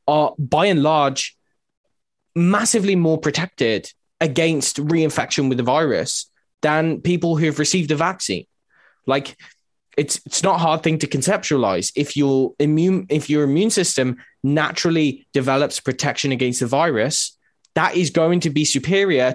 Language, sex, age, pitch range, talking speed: English, male, 20-39, 130-160 Hz, 145 wpm